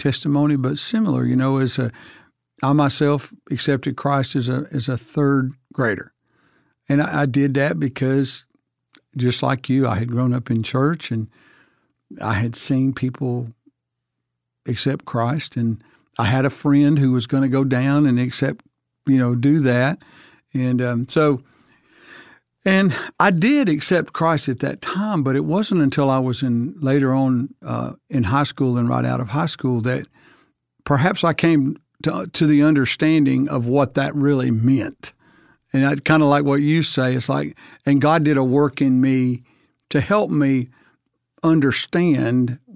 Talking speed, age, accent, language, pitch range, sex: 170 wpm, 60-79, American, English, 130-150 Hz, male